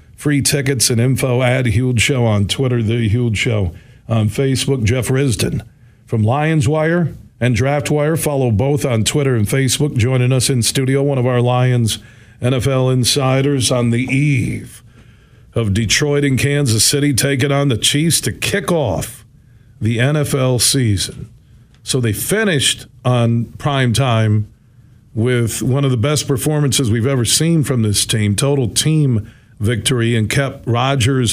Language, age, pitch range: English, 50-69, 115-140 Hz